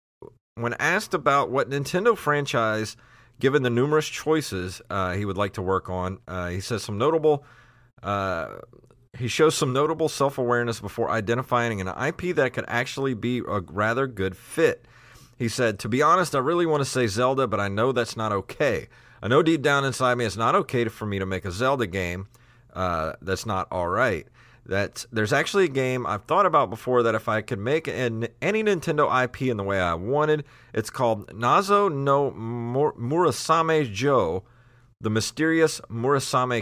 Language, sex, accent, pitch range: English, male, American, 105-135 Hz